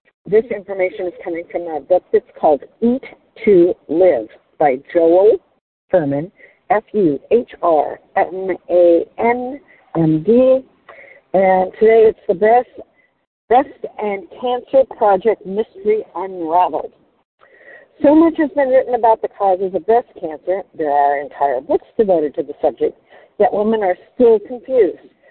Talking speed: 120 wpm